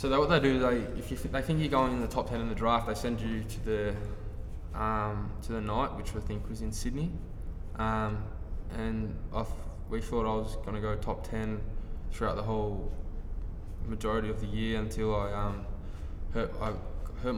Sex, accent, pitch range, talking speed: male, Australian, 95-110 Hz, 205 wpm